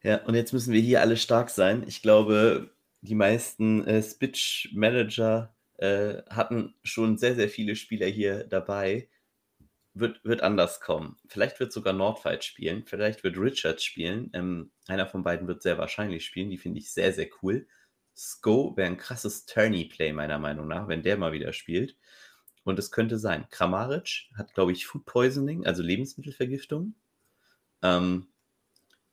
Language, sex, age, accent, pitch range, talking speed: German, male, 30-49, German, 90-115 Hz, 155 wpm